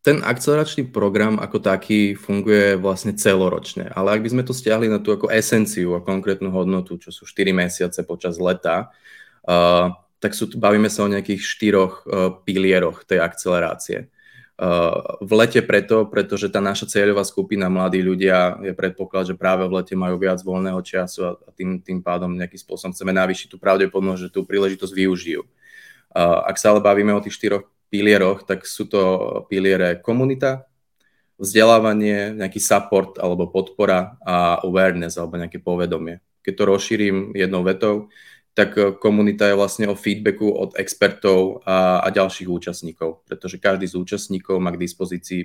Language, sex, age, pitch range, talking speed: Czech, male, 20-39, 90-105 Hz, 160 wpm